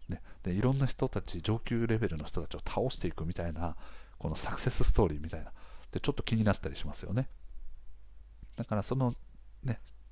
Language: Japanese